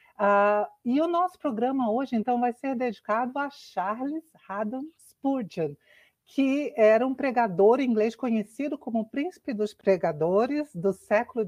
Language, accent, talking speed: Portuguese, Brazilian, 135 wpm